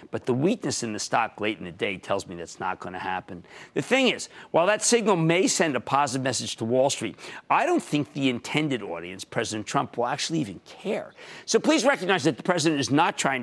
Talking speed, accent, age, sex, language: 230 wpm, American, 50-69, male, English